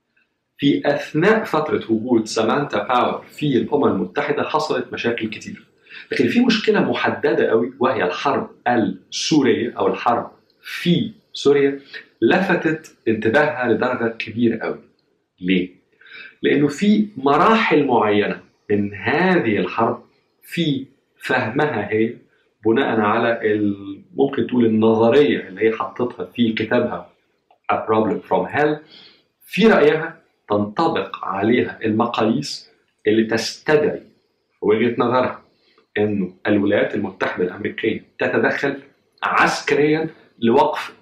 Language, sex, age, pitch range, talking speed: Arabic, male, 50-69, 110-150 Hz, 100 wpm